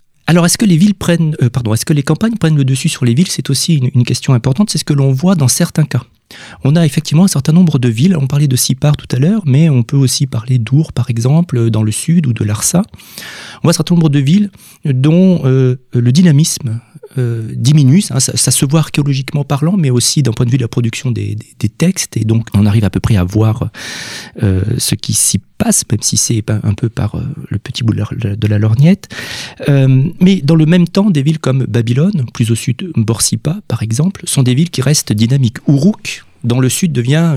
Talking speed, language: 235 wpm, French